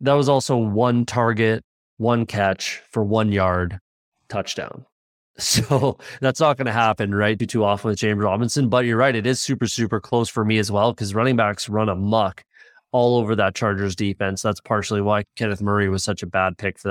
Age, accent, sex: 20-39, American, male